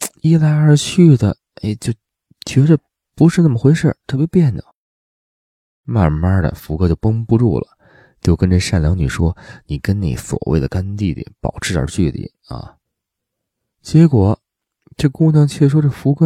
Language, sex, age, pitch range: Chinese, male, 20-39, 90-130 Hz